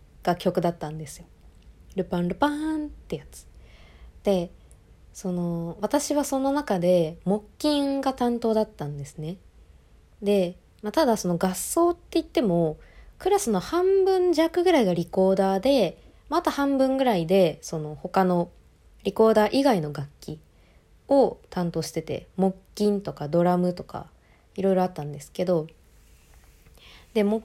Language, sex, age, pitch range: Japanese, female, 20-39, 160-245 Hz